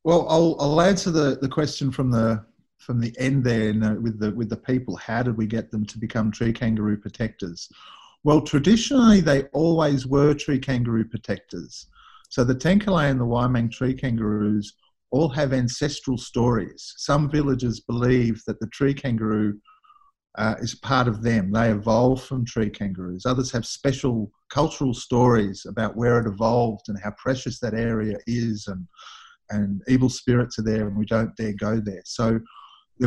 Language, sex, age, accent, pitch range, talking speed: English, male, 50-69, Australian, 110-135 Hz, 175 wpm